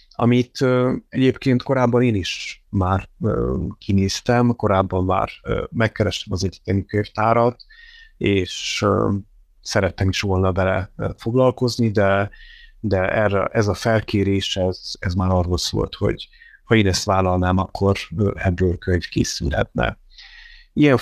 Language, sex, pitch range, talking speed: Hungarian, male, 95-115 Hz, 115 wpm